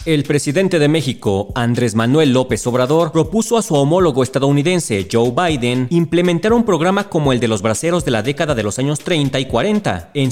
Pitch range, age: 130-175 Hz, 40-59